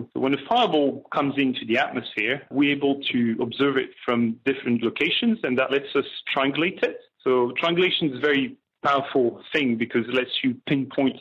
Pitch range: 120-145 Hz